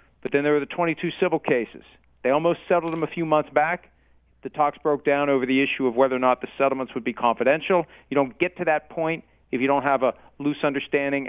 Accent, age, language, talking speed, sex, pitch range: American, 40-59, English, 240 wpm, male, 125-155 Hz